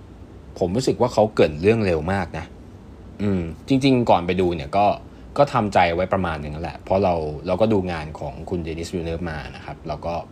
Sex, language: male, Thai